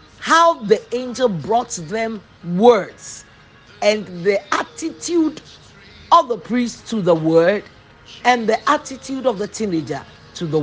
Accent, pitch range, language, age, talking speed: Nigerian, 165-250 Hz, English, 40-59, 130 wpm